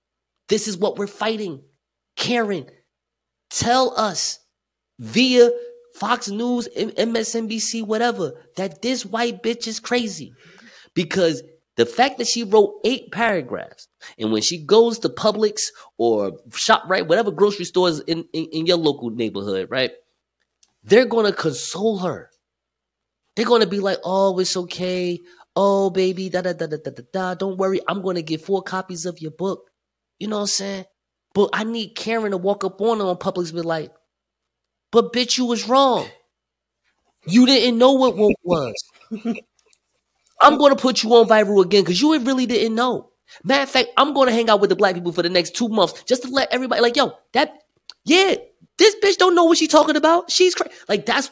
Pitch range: 180-245 Hz